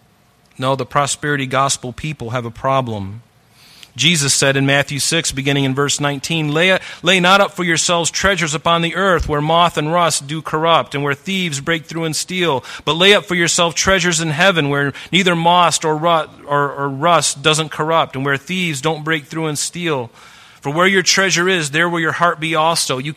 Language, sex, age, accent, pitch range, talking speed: English, male, 40-59, American, 135-165 Hz, 195 wpm